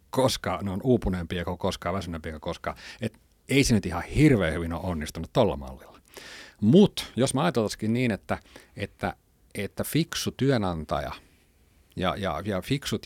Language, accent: Finnish, native